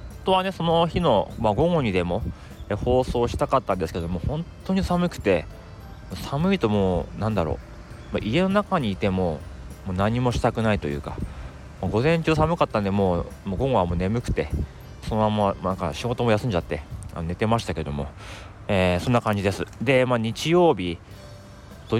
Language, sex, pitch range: Japanese, male, 90-120 Hz